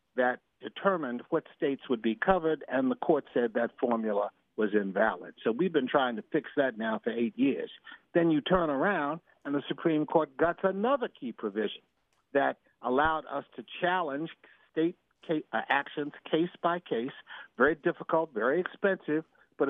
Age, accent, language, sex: 60-79, American, English, male